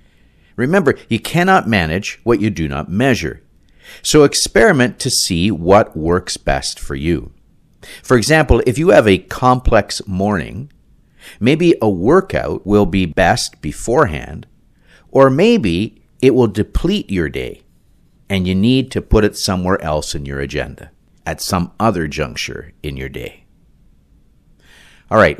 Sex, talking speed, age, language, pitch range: male, 140 wpm, 50-69, English, 80-120 Hz